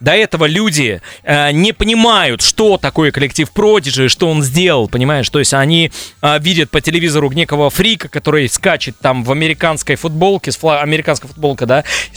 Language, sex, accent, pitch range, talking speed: Russian, male, native, 140-180 Hz, 175 wpm